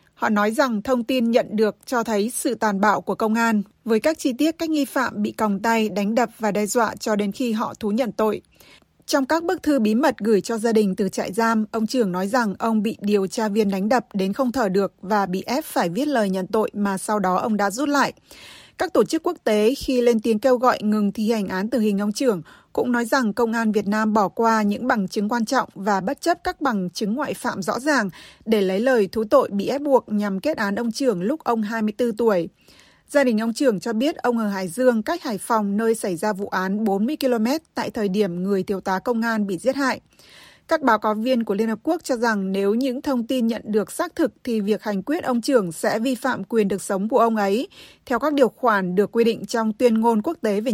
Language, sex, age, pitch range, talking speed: Vietnamese, female, 20-39, 205-255 Hz, 255 wpm